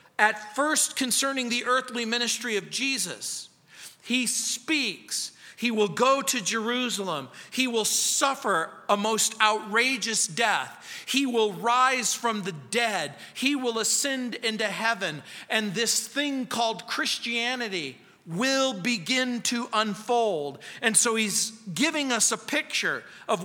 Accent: American